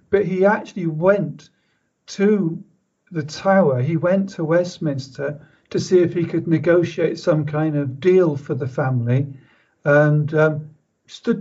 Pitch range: 150-185 Hz